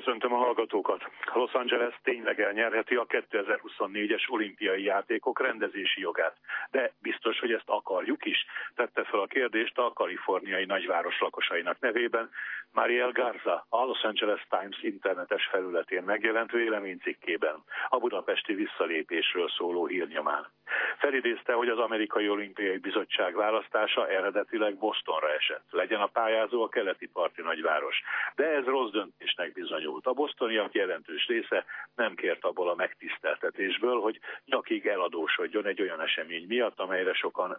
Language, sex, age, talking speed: Hungarian, male, 60-79, 130 wpm